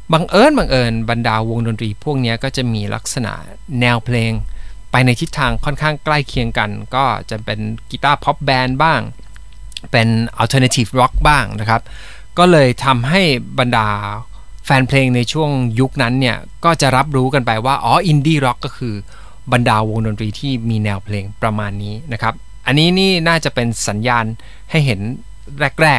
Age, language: 20-39, Thai